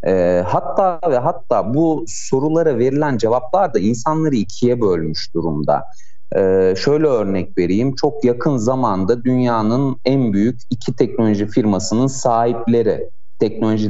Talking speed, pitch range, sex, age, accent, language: 110 wpm, 105-145 Hz, male, 30-49, native, Turkish